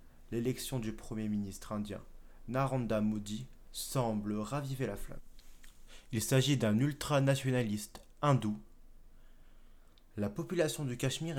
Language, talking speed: French, 105 wpm